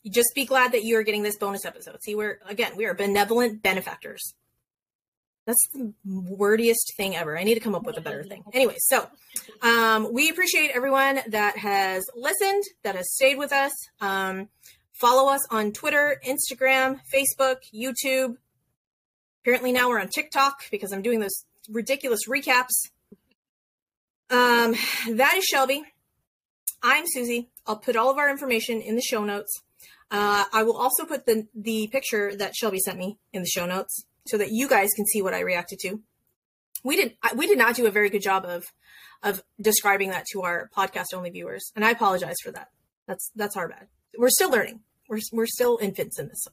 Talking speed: 185 wpm